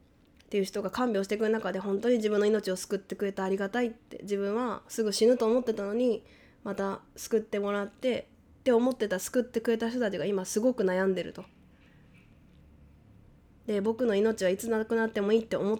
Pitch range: 185-230 Hz